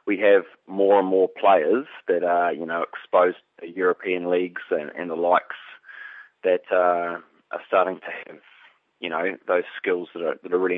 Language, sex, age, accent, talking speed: English, male, 20-39, Australian, 185 wpm